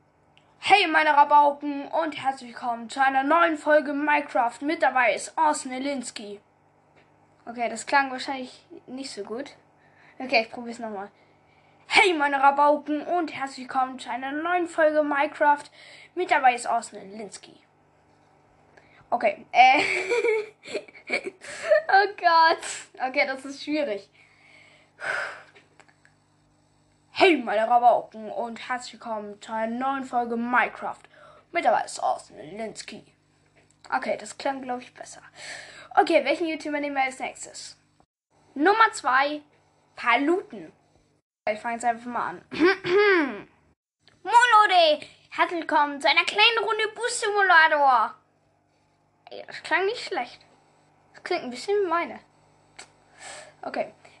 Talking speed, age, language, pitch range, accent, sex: 120 wpm, 10-29, German, 250-350 Hz, German, female